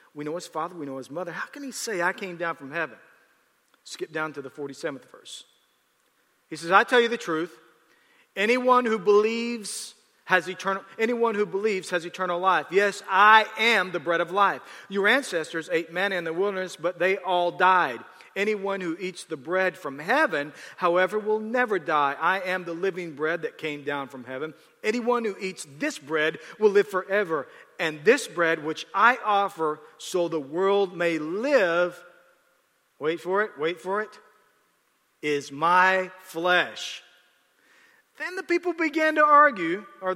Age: 40-59